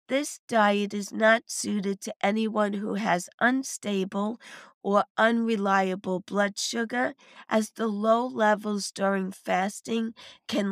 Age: 50-69